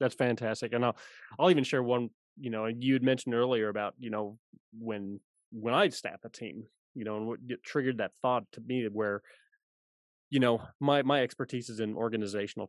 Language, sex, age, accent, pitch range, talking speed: English, male, 30-49, American, 110-140 Hz, 195 wpm